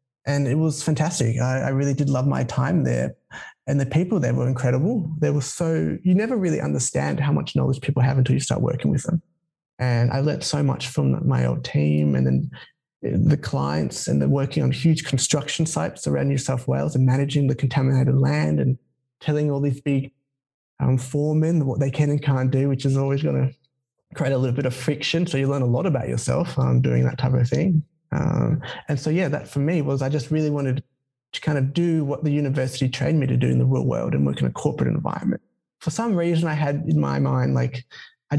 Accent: Australian